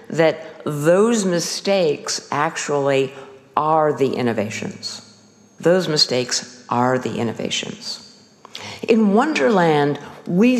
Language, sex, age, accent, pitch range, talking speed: English, female, 50-69, American, 145-200 Hz, 85 wpm